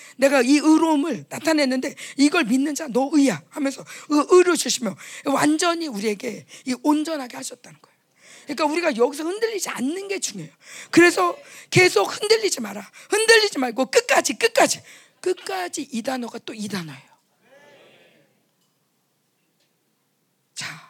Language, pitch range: Korean, 235-335 Hz